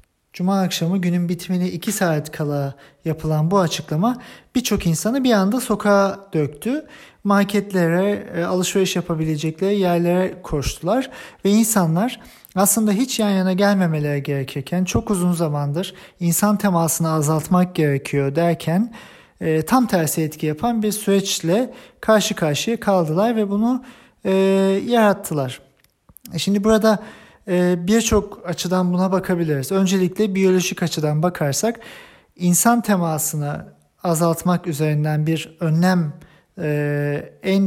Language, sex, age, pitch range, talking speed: German, male, 40-59, 155-200 Hz, 105 wpm